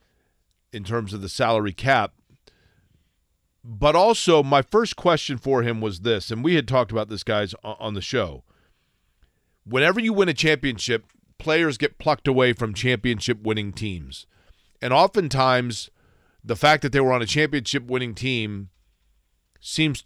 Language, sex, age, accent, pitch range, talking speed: English, male, 40-59, American, 110-140 Hz, 145 wpm